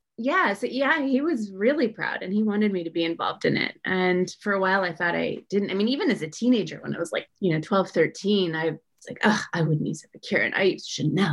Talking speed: 270 wpm